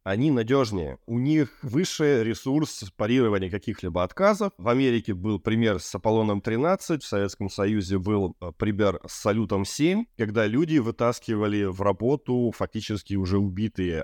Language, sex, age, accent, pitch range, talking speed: Russian, male, 20-39, native, 100-130 Hz, 130 wpm